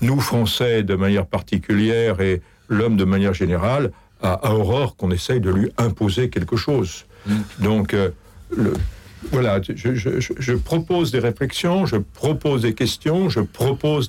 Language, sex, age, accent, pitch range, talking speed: French, male, 60-79, French, 100-125 Hz, 150 wpm